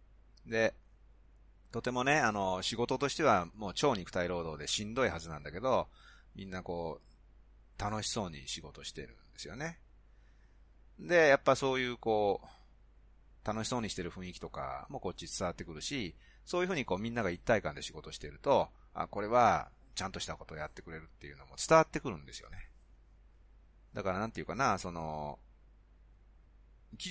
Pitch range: 75-110 Hz